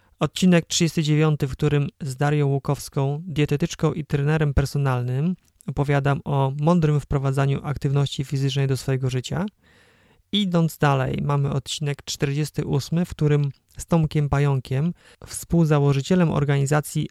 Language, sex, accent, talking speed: Polish, male, native, 110 wpm